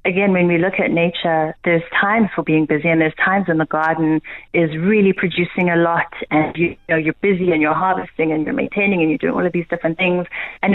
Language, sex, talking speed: English, female, 240 wpm